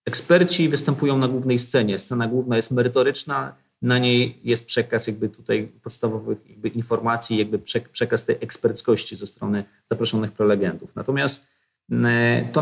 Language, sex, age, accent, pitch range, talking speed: Polish, male, 30-49, native, 115-130 Hz, 135 wpm